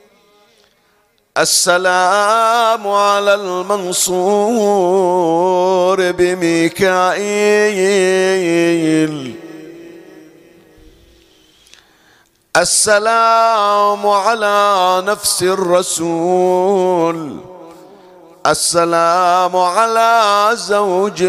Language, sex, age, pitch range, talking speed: Arabic, male, 50-69, 170-205 Hz, 30 wpm